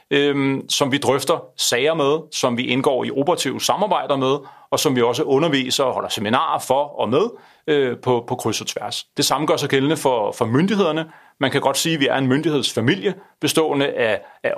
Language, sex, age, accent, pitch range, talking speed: Danish, male, 30-49, native, 130-175 Hz, 205 wpm